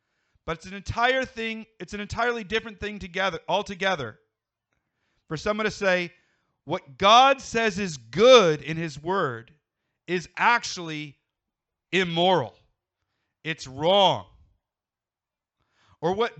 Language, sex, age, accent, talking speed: English, male, 40-59, American, 115 wpm